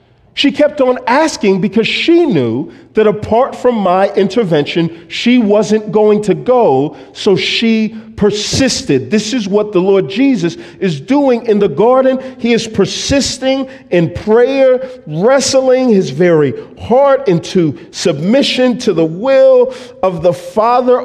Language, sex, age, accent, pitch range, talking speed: English, male, 50-69, American, 155-250 Hz, 135 wpm